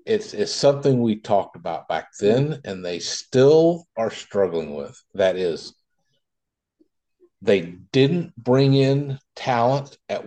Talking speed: 130 wpm